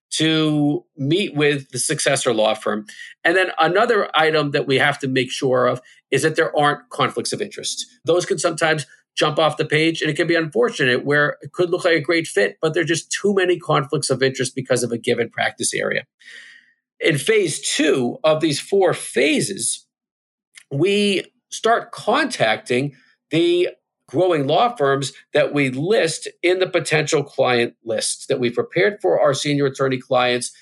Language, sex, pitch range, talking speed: English, male, 135-175 Hz, 175 wpm